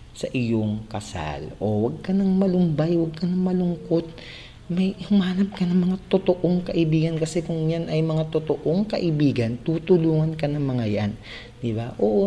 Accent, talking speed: native, 165 wpm